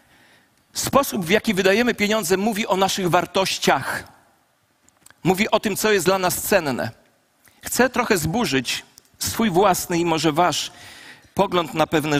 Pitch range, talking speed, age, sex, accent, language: 160-215 Hz, 140 wpm, 50-69, male, native, Polish